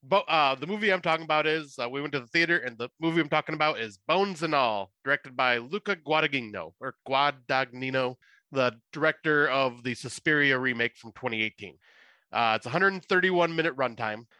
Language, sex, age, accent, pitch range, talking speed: English, male, 30-49, American, 125-165 Hz, 185 wpm